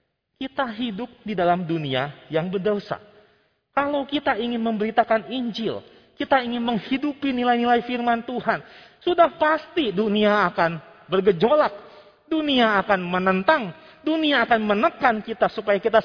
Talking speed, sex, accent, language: 120 wpm, male, native, Indonesian